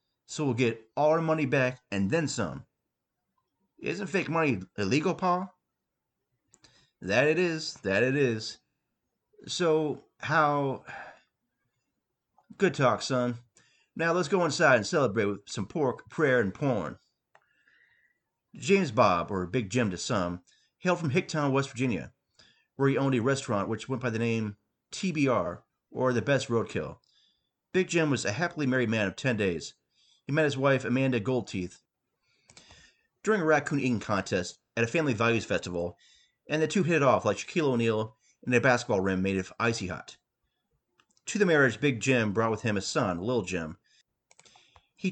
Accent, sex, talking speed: American, male, 160 wpm